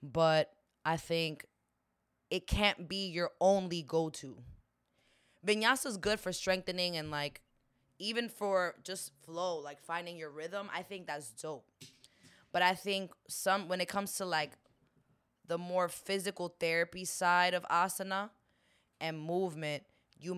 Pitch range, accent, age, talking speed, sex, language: 150-190 Hz, American, 10-29, 140 wpm, female, English